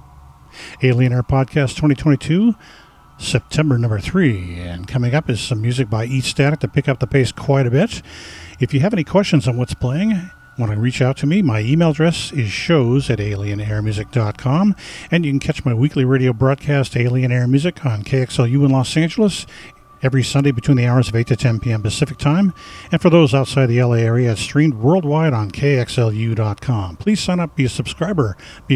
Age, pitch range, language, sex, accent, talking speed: 50-69, 115-145 Hz, English, male, American, 190 wpm